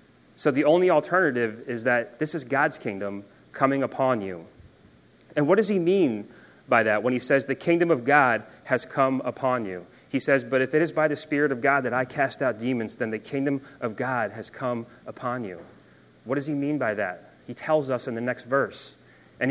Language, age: English, 30-49